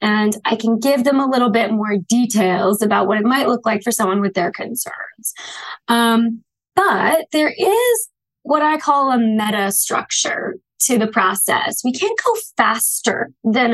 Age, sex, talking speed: 20-39, female, 170 wpm